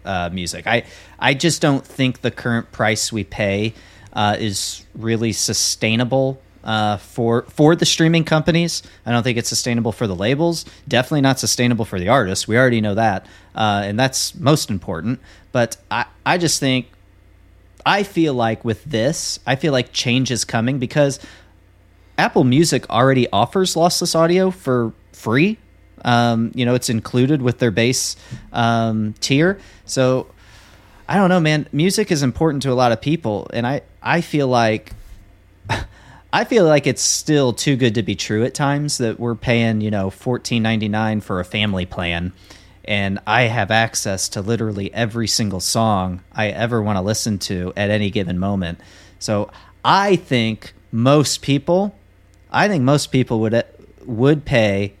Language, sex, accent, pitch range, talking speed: English, male, American, 100-130 Hz, 165 wpm